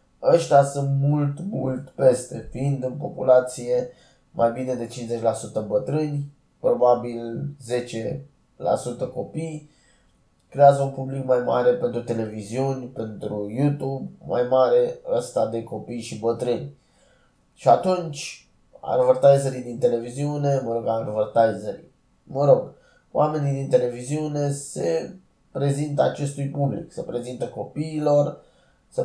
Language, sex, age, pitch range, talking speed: Romanian, male, 20-39, 120-145 Hz, 110 wpm